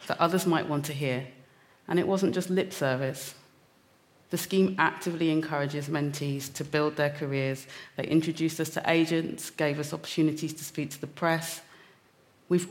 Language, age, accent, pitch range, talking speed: English, 30-49, British, 140-170 Hz, 165 wpm